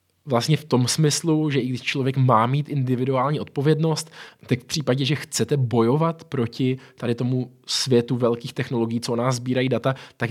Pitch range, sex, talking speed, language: 110-135 Hz, male, 175 wpm, Czech